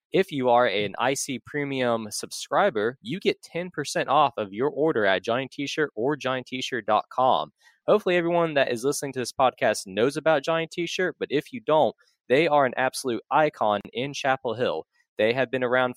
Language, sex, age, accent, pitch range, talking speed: English, male, 20-39, American, 125-160 Hz, 175 wpm